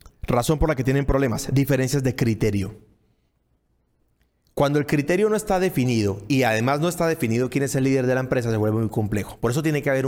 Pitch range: 120-180 Hz